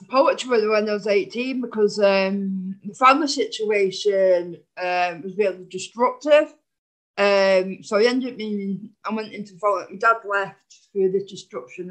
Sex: female